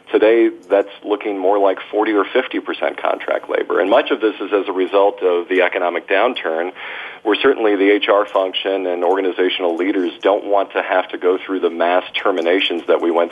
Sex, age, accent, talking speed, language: male, 40-59, American, 195 wpm, English